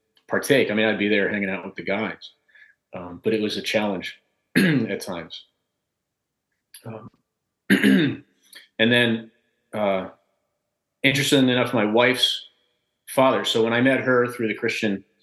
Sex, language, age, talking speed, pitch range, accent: male, English, 40-59, 140 wpm, 100-120 Hz, American